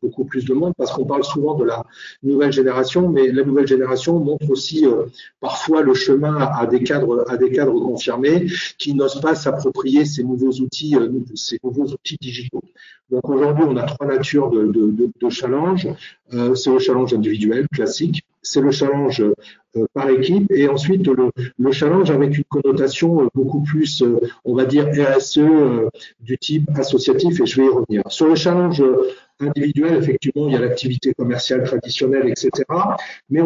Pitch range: 130-160 Hz